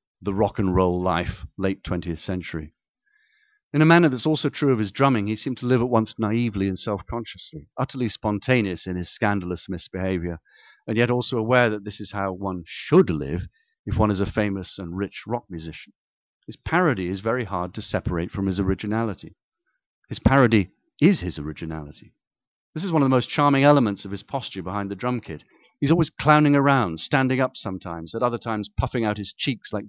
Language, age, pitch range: English, 40-59, 95-125 Hz